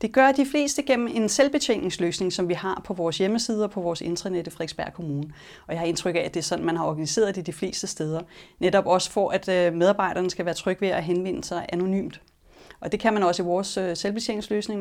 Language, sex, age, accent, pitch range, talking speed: Danish, female, 30-49, native, 165-210 Hz, 225 wpm